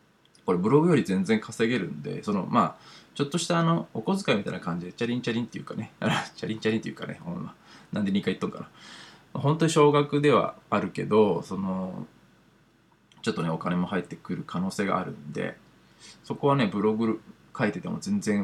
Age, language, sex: 20-39, Japanese, male